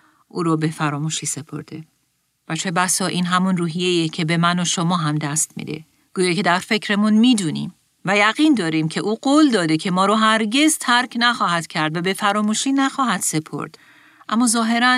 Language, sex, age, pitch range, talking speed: Persian, female, 40-59, 165-220 Hz, 175 wpm